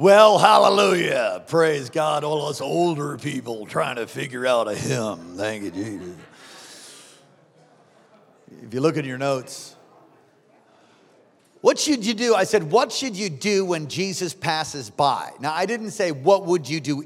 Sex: male